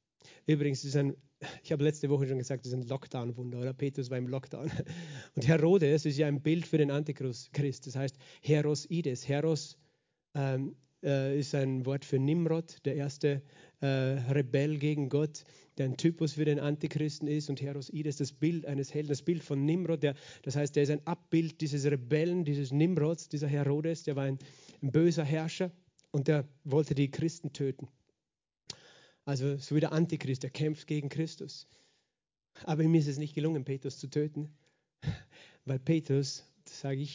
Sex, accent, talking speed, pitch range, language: male, German, 175 wpm, 140-160 Hz, German